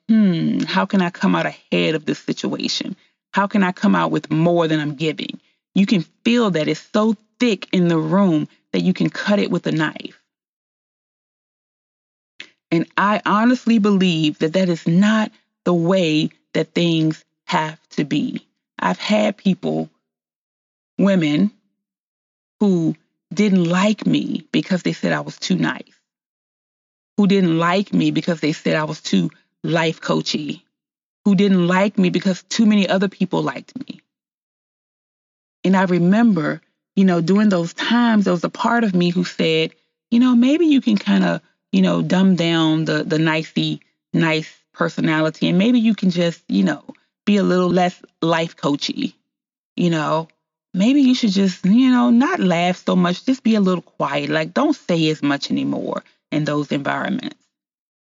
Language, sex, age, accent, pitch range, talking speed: English, female, 30-49, American, 160-210 Hz, 165 wpm